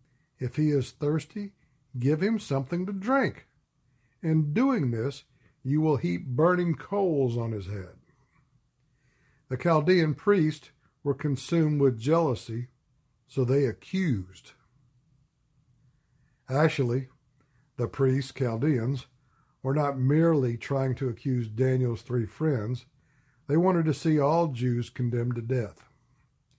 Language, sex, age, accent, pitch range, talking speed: English, male, 60-79, American, 125-150 Hz, 115 wpm